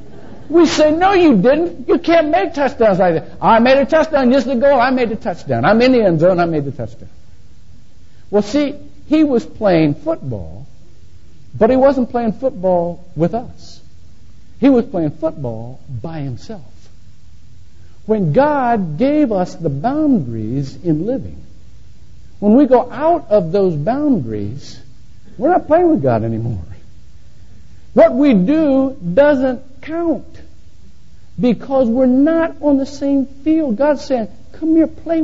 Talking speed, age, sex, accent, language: 150 wpm, 60-79, male, American, English